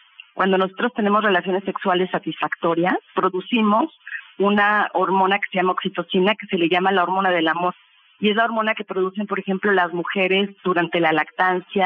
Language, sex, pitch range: Spanish, female, 175-215 Hz